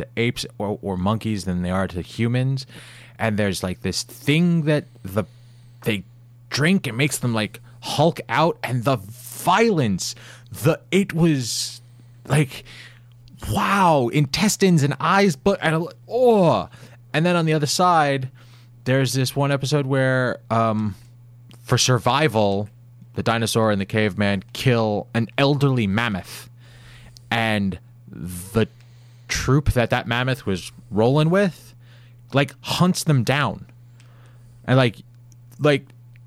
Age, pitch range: 20-39, 115-140 Hz